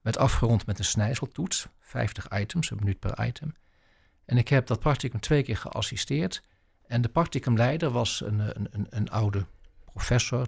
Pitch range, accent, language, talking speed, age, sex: 100-130 Hz, Dutch, Dutch, 165 wpm, 60-79, male